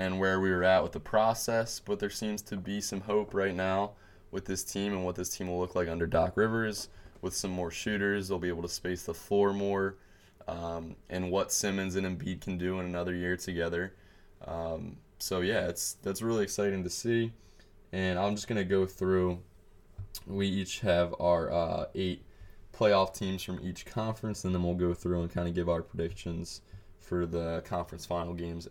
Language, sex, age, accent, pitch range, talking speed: English, male, 20-39, American, 90-105 Hz, 200 wpm